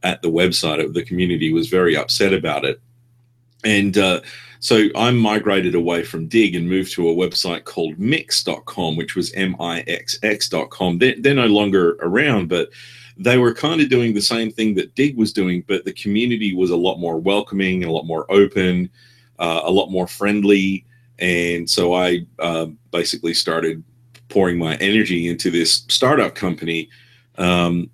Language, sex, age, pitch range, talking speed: English, male, 40-59, 85-120 Hz, 175 wpm